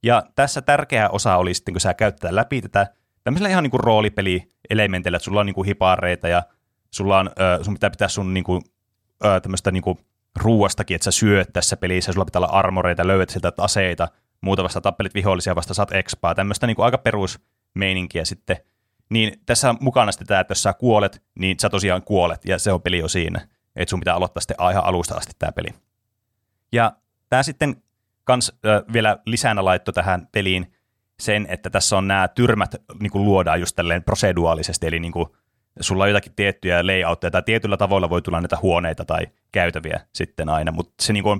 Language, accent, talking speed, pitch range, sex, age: Finnish, native, 185 wpm, 90-110 Hz, male, 30-49